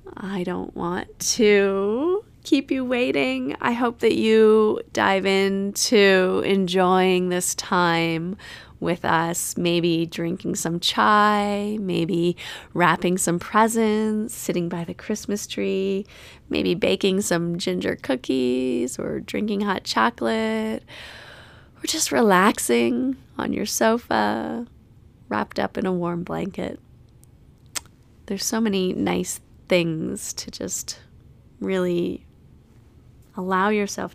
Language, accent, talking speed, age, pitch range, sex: English, American, 110 wpm, 20-39, 175-220 Hz, female